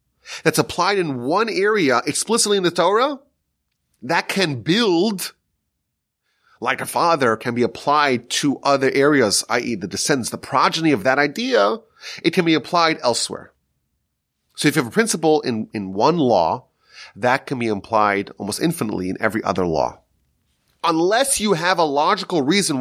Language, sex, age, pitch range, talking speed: English, male, 30-49, 110-175 Hz, 160 wpm